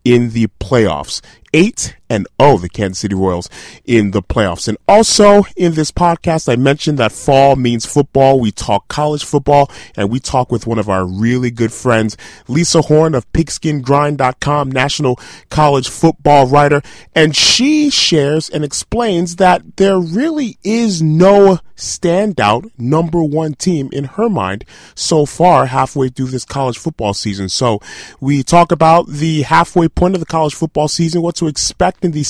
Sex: male